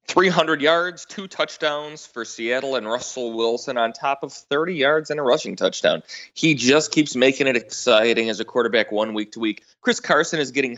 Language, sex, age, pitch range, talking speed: English, male, 30-49, 115-140 Hz, 195 wpm